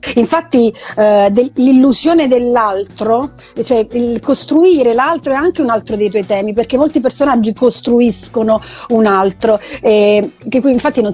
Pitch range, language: 225-275 Hz, Italian